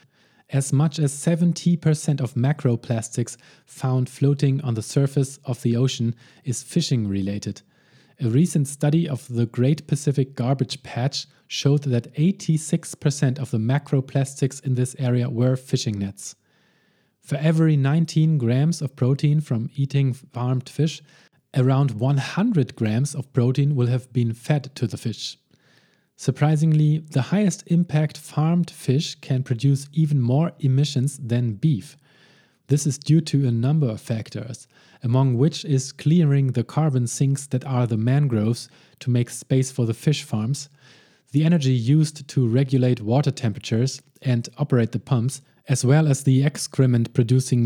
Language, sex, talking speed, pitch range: English, male, 145 wpm, 125-150 Hz